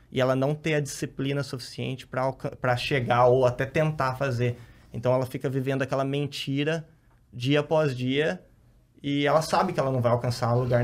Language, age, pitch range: Portuguese, 20-39, 125-145 Hz